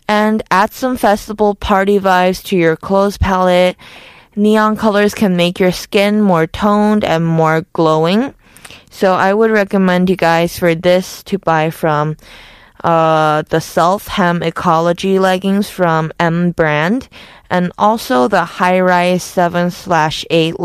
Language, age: Korean, 20-39